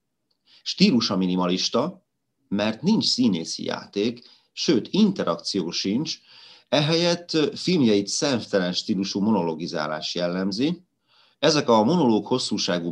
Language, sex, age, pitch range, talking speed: Hungarian, male, 30-49, 85-120 Hz, 90 wpm